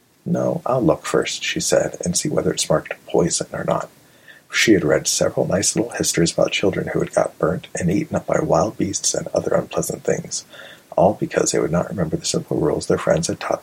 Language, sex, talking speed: English, male, 220 wpm